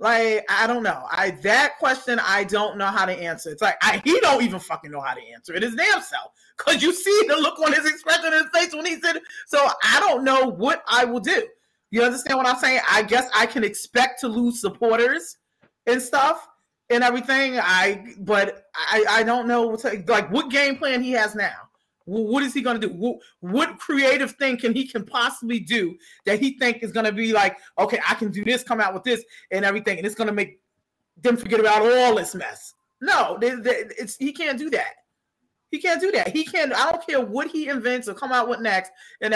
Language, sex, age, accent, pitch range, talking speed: English, male, 30-49, American, 215-275 Hz, 235 wpm